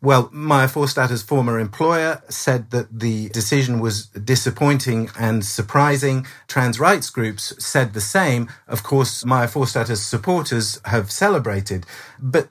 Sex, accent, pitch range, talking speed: male, British, 115-140 Hz, 130 wpm